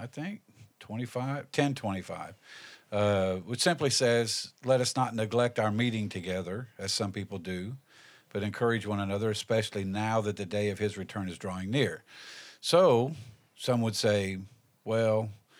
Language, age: English, 50-69